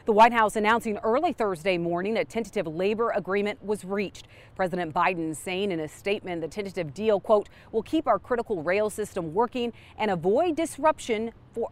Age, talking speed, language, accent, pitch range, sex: 40-59, 175 wpm, English, American, 185-240 Hz, female